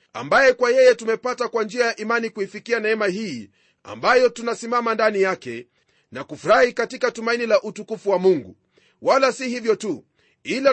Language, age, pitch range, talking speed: Swahili, 40-59, 215-250 Hz, 155 wpm